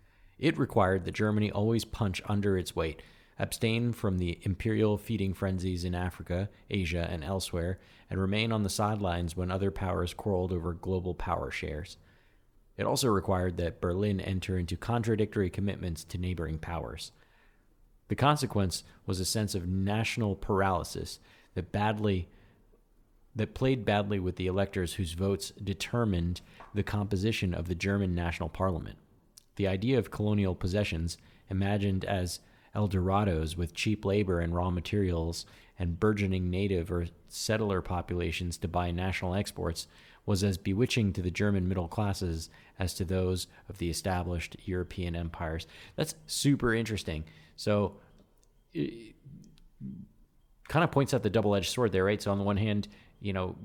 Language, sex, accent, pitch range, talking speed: English, male, American, 90-105 Hz, 145 wpm